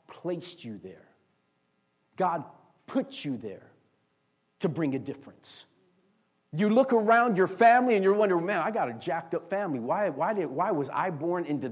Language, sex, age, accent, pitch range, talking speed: English, male, 50-69, American, 195-310 Hz, 175 wpm